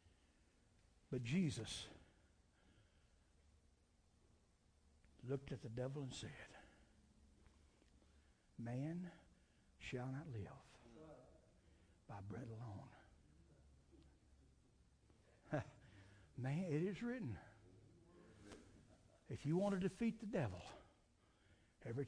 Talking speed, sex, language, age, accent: 75 wpm, male, English, 60-79, American